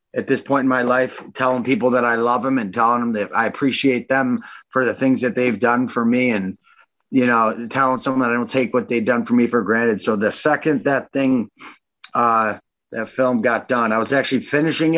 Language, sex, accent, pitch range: English, male, American, 120-145 Hz